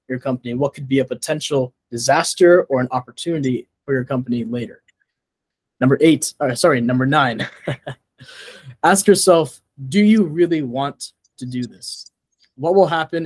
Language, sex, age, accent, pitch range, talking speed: English, male, 20-39, American, 125-155 Hz, 150 wpm